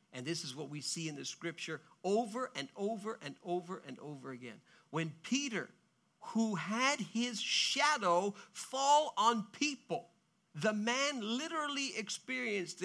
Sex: male